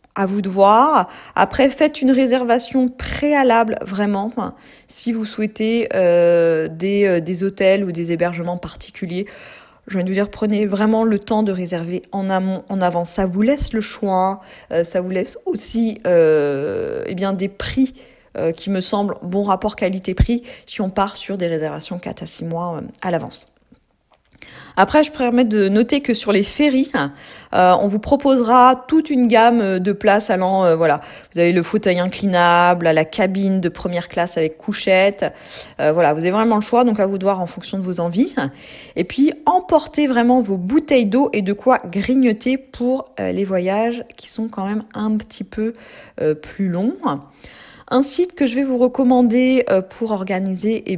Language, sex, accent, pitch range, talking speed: French, female, French, 185-245 Hz, 180 wpm